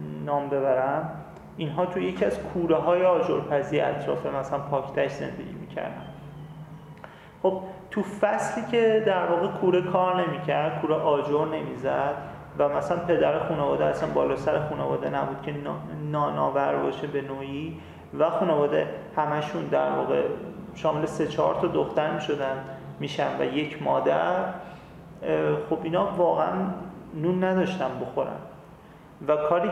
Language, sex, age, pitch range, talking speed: Persian, male, 40-59, 150-185 Hz, 130 wpm